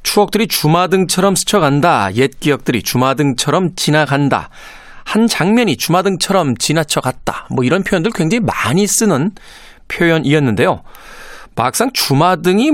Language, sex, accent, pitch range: Korean, male, native, 135-205 Hz